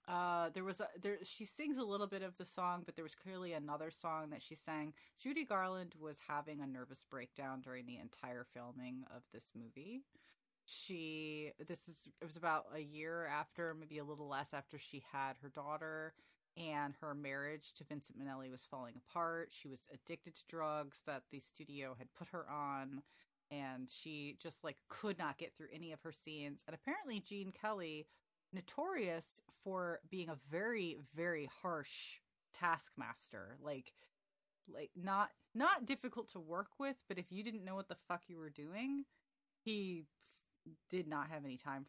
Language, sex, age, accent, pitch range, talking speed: English, female, 30-49, American, 140-185 Hz, 180 wpm